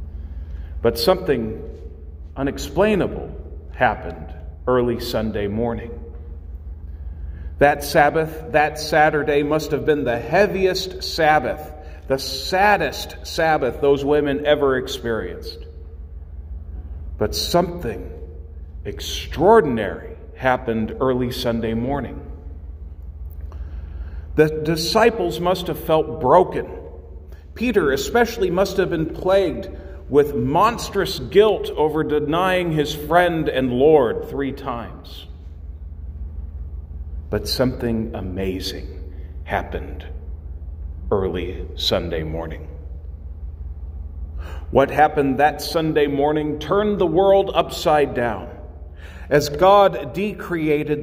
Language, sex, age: English, male, 50-69